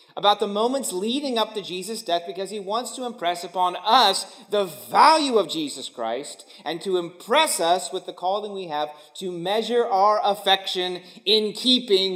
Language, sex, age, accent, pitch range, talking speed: English, male, 40-59, American, 165-210 Hz, 175 wpm